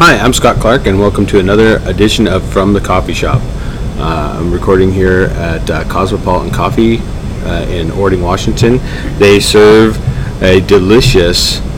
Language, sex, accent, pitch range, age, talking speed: English, male, American, 90-110 Hz, 30-49, 155 wpm